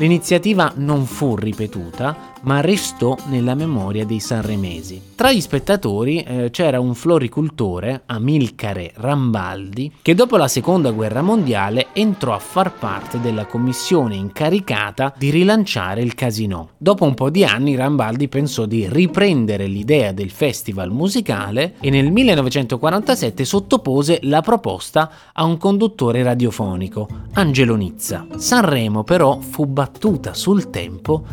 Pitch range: 110-170 Hz